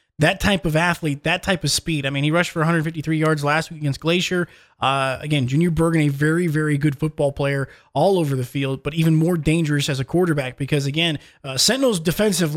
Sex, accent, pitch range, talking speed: male, American, 145-170 Hz, 215 wpm